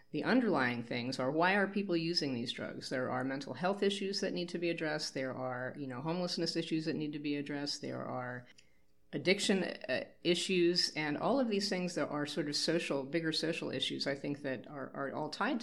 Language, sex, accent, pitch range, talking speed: English, female, American, 135-165 Hz, 215 wpm